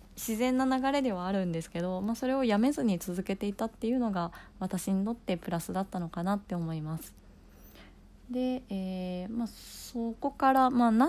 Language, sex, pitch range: Japanese, female, 160-225 Hz